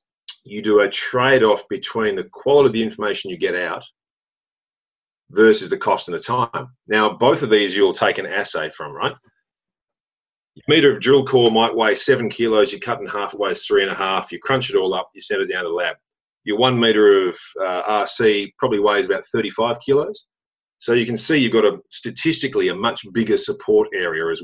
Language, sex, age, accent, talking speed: English, male, 40-59, Australian, 210 wpm